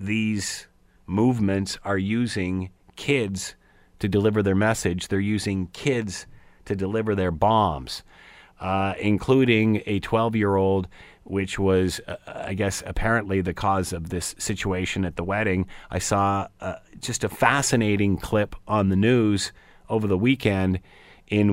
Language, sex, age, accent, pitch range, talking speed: English, male, 40-59, American, 95-110 Hz, 135 wpm